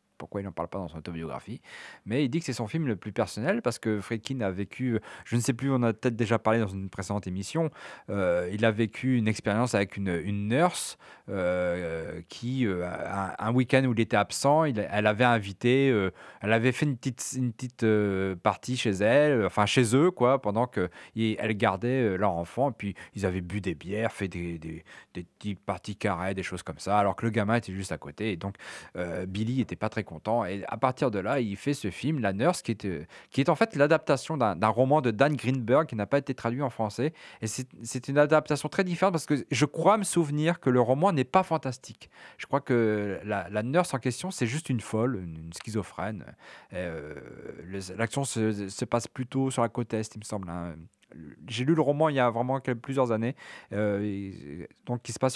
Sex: male